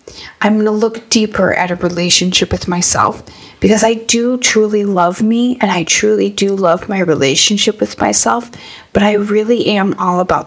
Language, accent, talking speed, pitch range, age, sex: English, American, 180 wpm, 180-215 Hz, 30-49, female